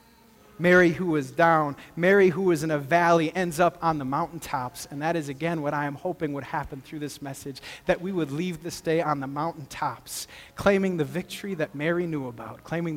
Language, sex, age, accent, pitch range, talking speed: English, male, 30-49, American, 175-235 Hz, 210 wpm